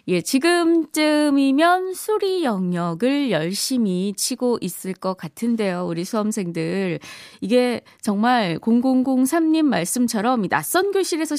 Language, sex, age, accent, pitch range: Korean, female, 20-39, native, 180-280 Hz